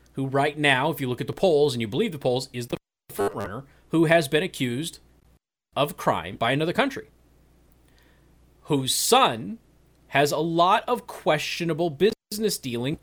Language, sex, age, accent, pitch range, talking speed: English, male, 30-49, American, 135-190 Hz, 160 wpm